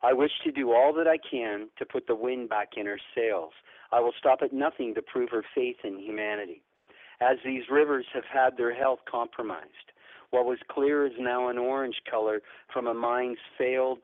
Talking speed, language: 200 wpm, English